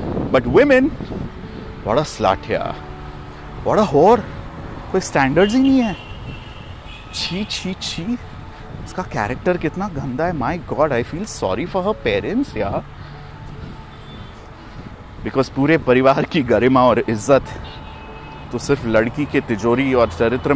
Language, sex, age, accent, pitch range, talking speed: Hindi, male, 30-49, native, 90-125 Hz, 130 wpm